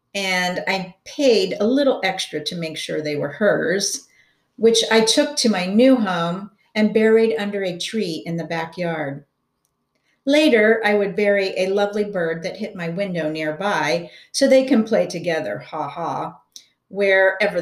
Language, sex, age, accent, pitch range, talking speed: English, female, 50-69, American, 175-240 Hz, 160 wpm